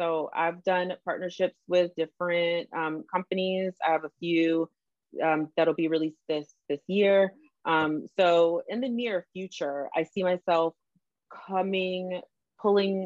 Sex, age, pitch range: female, 30-49, 155-190 Hz